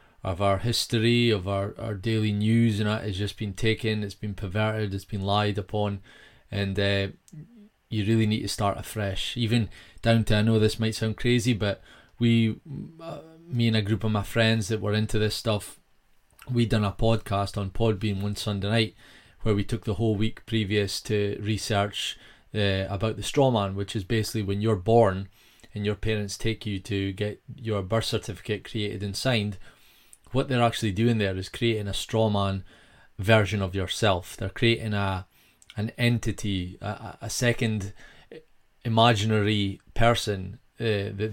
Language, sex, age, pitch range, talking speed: English, male, 20-39, 100-115 Hz, 175 wpm